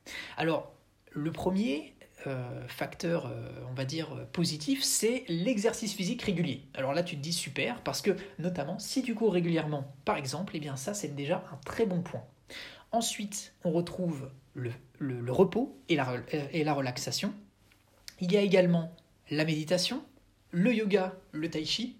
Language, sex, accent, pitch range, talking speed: French, male, French, 145-205 Hz, 165 wpm